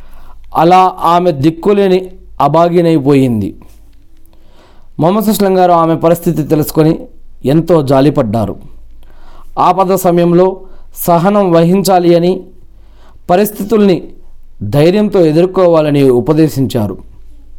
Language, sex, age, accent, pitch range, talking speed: Telugu, male, 40-59, native, 130-185 Hz, 65 wpm